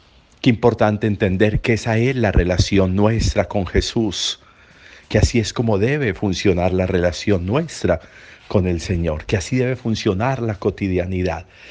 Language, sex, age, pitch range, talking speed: Spanish, male, 50-69, 90-115 Hz, 150 wpm